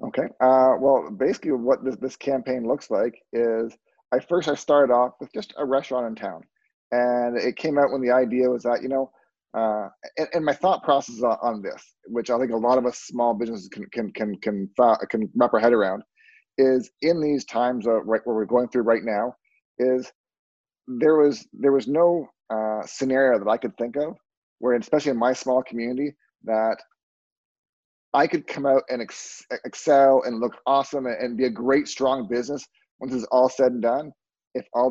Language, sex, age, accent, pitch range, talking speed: English, male, 30-49, American, 115-135 Hz, 200 wpm